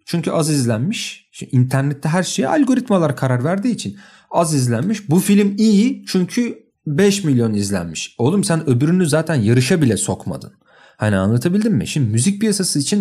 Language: Turkish